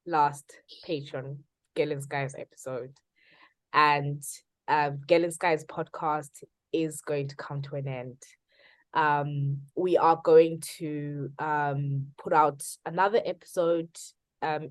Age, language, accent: 20-39, English, South African